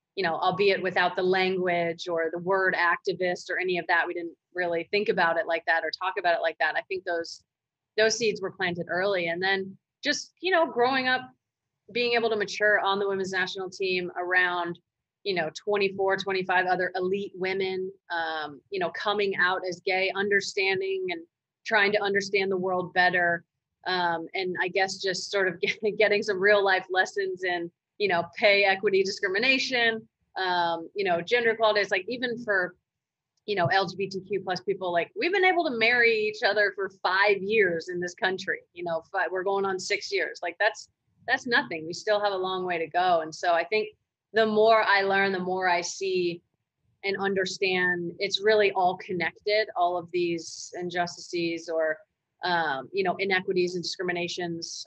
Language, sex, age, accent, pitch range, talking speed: English, female, 30-49, American, 175-205 Hz, 185 wpm